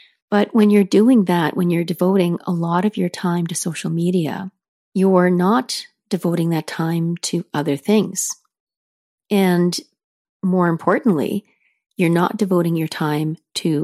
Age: 40-59